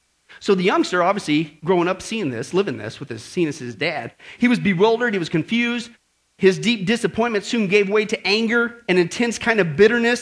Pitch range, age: 150-235 Hz, 40-59